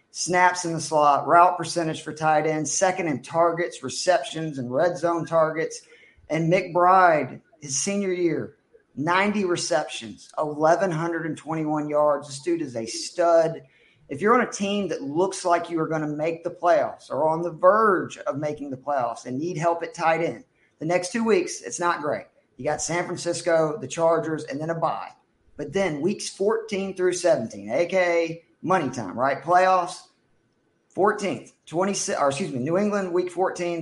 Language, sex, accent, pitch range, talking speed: English, male, American, 150-175 Hz, 175 wpm